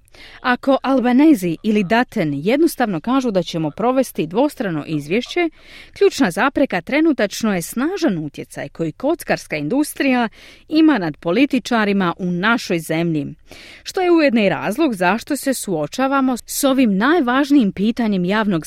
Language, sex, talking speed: Croatian, female, 120 wpm